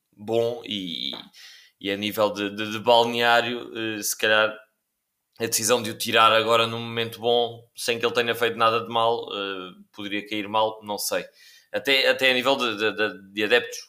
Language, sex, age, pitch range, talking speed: Portuguese, male, 20-39, 110-130 Hz, 190 wpm